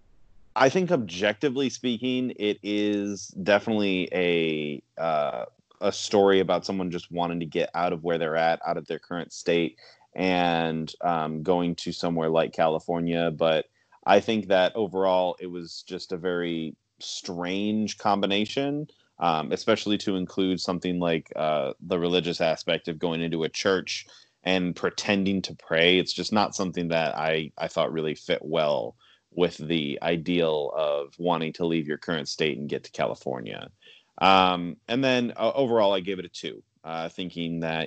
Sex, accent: male, American